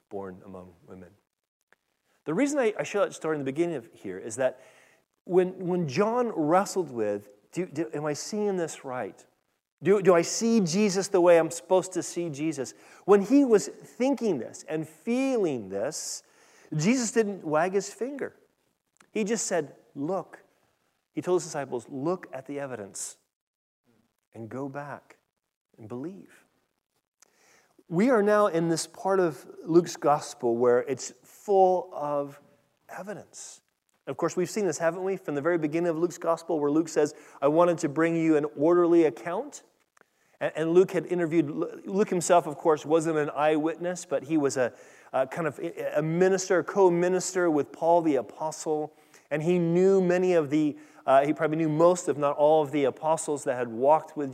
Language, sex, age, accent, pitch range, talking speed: English, male, 30-49, American, 150-185 Hz, 170 wpm